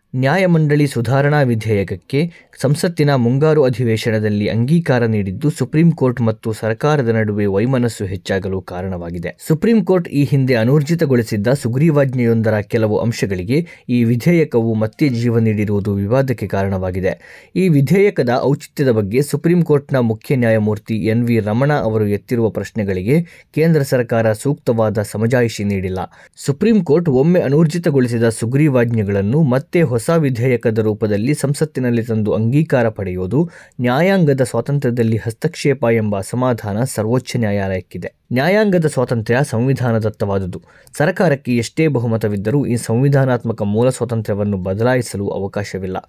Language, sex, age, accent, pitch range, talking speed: Kannada, male, 20-39, native, 110-145 Hz, 100 wpm